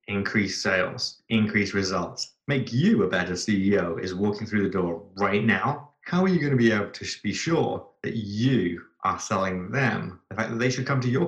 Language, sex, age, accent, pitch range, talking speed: English, male, 30-49, British, 95-115 Hz, 205 wpm